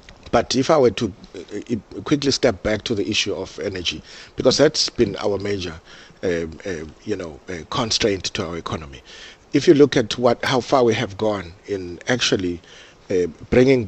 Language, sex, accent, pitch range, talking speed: English, male, South African, 90-110 Hz, 175 wpm